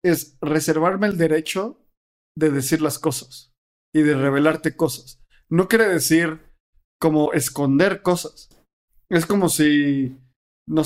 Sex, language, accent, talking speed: male, Spanish, Mexican, 120 wpm